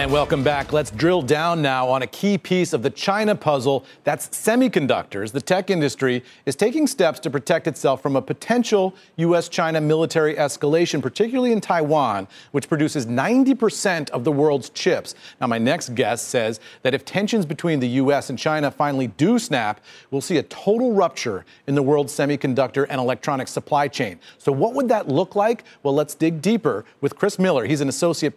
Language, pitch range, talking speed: English, 140-185 Hz, 185 wpm